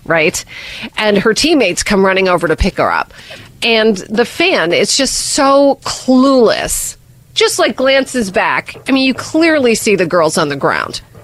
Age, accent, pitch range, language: 40-59, American, 160-225 Hz, English